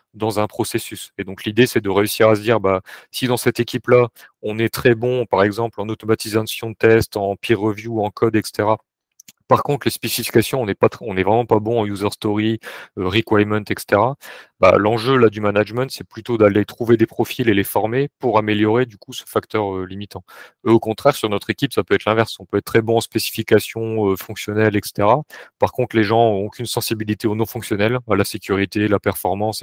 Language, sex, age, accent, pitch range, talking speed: French, male, 30-49, French, 100-115 Hz, 215 wpm